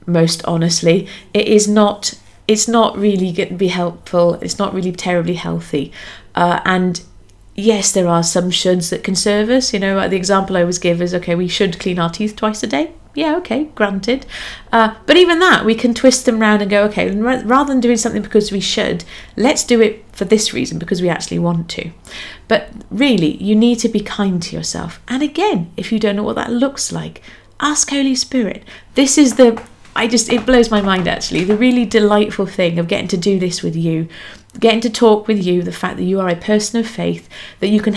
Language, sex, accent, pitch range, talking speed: English, female, British, 175-230 Hz, 215 wpm